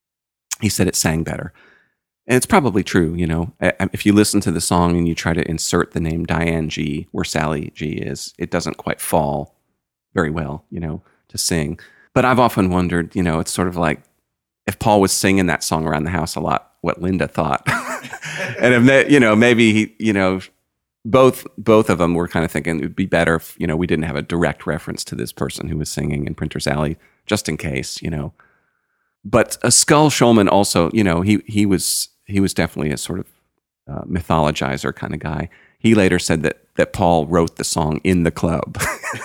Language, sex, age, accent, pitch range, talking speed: English, male, 40-59, American, 80-100 Hz, 215 wpm